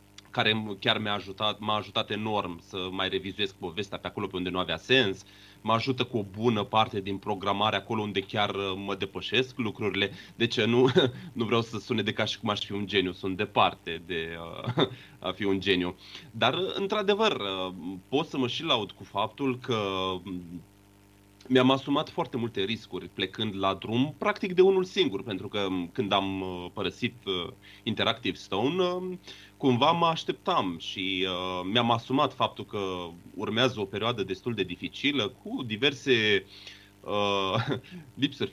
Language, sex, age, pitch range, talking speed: Romanian, male, 30-49, 100-130 Hz, 160 wpm